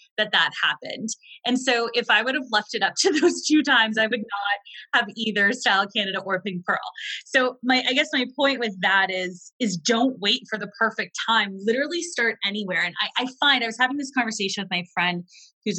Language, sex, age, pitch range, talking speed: English, female, 20-39, 195-245 Hz, 220 wpm